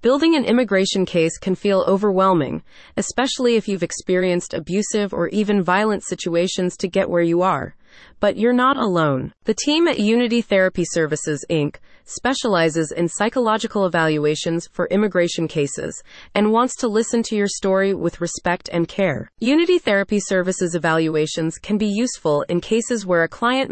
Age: 30-49